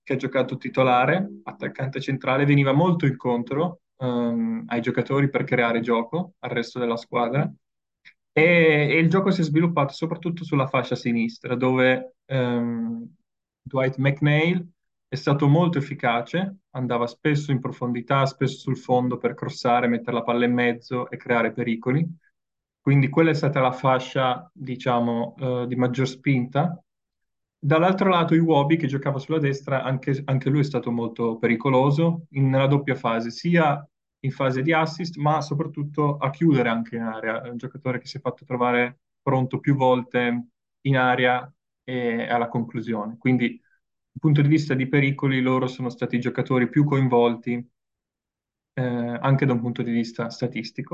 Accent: native